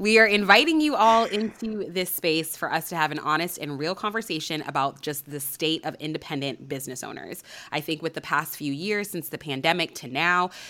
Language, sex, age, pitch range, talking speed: English, female, 20-39, 150-195 Hz, 210 wpm